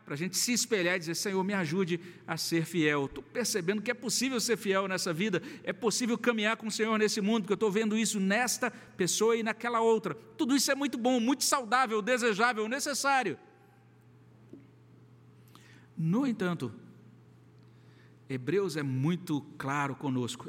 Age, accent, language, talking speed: 60-79, Brazilian, Portuguese, 165 wpm